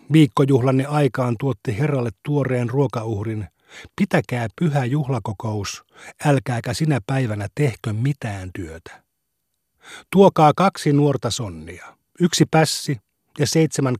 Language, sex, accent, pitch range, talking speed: Finnish, male, native, 120-150 Hz, 100 wpm